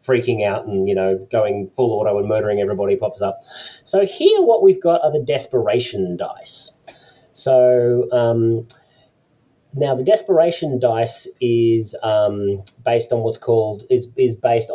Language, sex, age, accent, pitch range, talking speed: English, male, 30-49, Australian, 115-150 Hz, 150 wpm